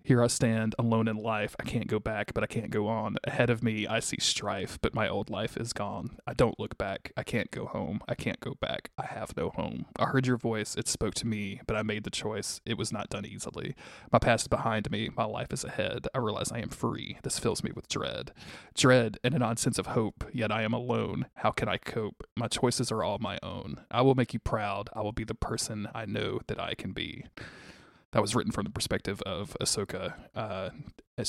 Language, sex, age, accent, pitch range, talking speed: English, male, 20-39, American, 105-125 Hz, 240 wpm